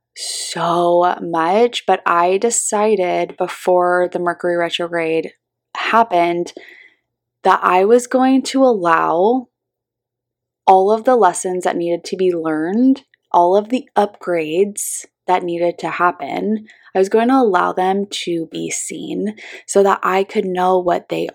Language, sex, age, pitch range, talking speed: English, female, 20-39, 170-210 Hz, 140 wpm